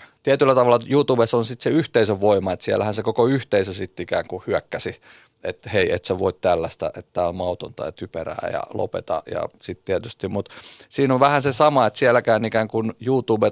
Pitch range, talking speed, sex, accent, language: 100-120 Hz, 205 wpm, male, native, Finnish